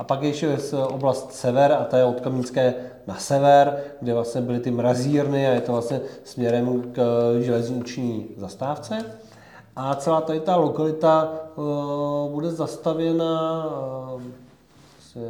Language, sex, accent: Czech, male, native